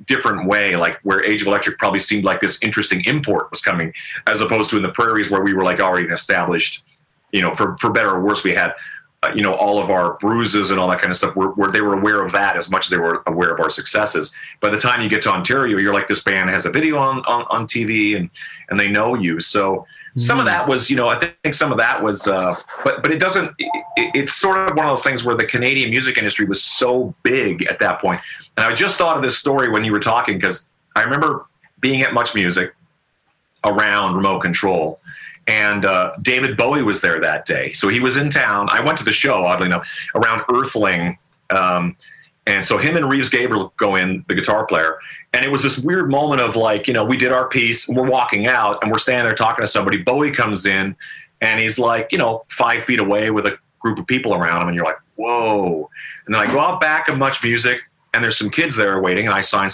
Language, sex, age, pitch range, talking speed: English, male, 30-49, 100-135 Hz, 245 wpm